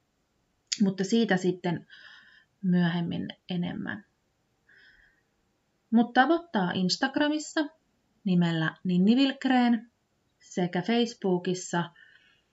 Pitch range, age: 175-215 Hz, 30-49